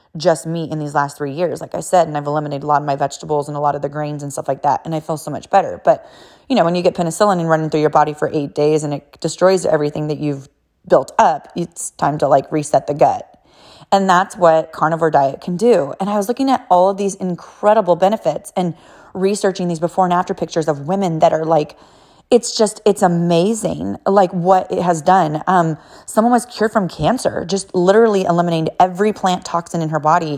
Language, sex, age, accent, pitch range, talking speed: English, female, 30-49, American, 150-185 Hz, 230 wpm